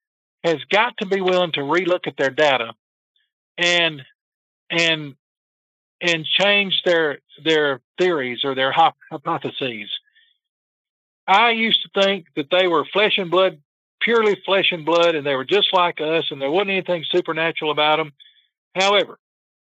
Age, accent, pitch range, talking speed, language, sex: 50-69, American, 145-200 Hz, 145 wpm, English, male